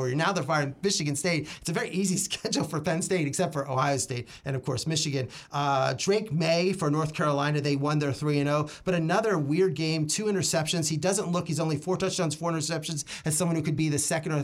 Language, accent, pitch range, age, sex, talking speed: English, American, 145-195 Hz, 30-49, male, 225 wpm